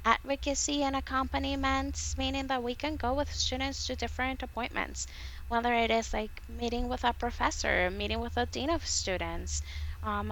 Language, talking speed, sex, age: English, 165 wpm, female, 10-29